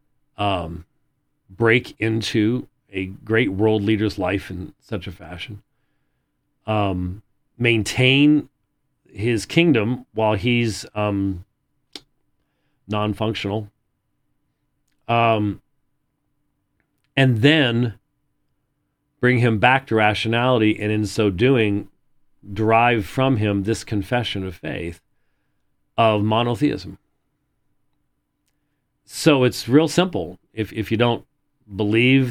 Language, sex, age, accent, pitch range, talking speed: English, male, 40-59, American, 105-140 Hz, 90 wpm